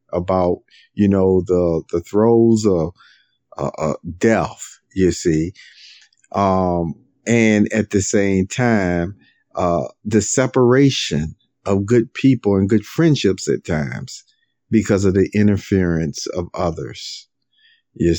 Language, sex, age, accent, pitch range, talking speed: English, male, 50-69, American, 90-115 Hz, 115 wpm